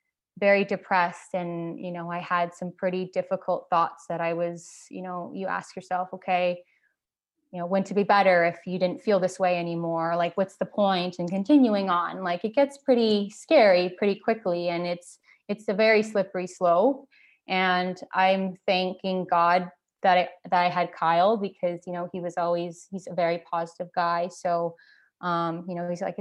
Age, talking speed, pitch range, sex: 20-39, 190 wpm, 175-200 Hz, female